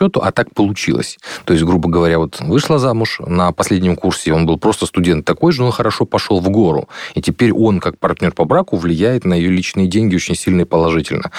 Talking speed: 215 wpm